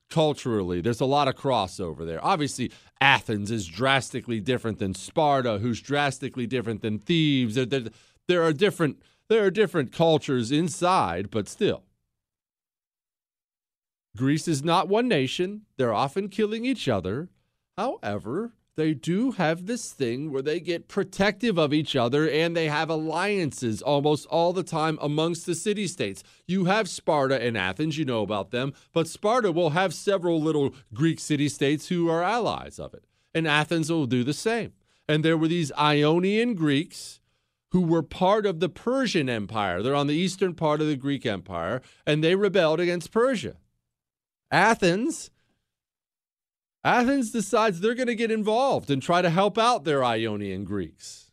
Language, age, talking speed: English, 40-59, 155 wpm